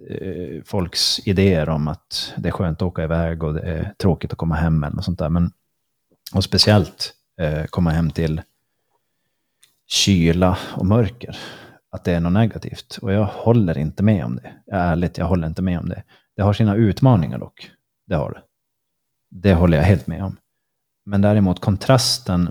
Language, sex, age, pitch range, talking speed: Swedish, male, 30-49, 85-105 Hz, 180 wpm